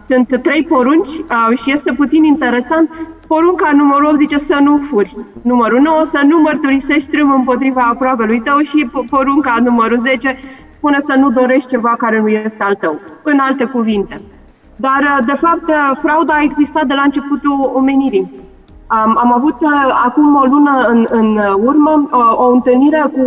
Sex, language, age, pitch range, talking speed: female, Romanian, 30-49, 235-290 Hz, 160 wpm